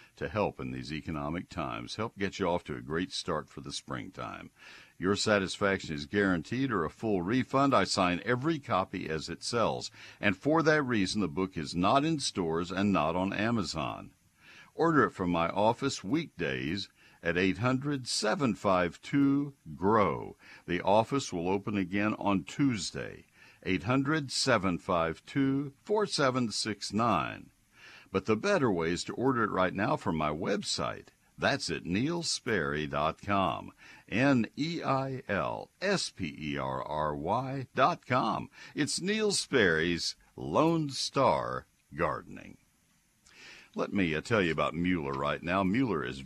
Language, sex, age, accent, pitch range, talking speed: English, male, 60-79, American, 85-130 Hz, 135 wpm